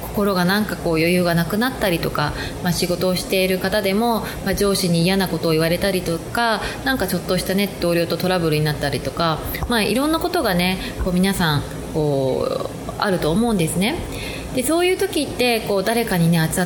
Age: 20-39